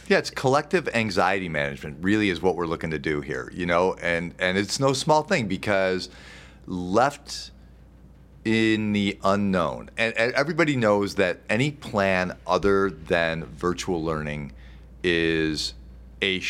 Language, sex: English, male